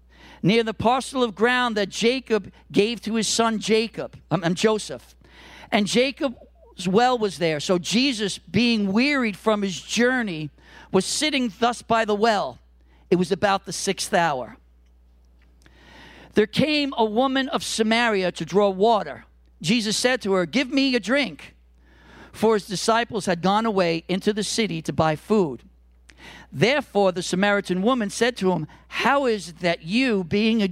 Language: English